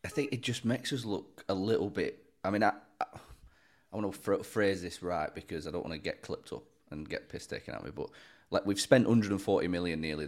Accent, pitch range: British, 85-115 Hz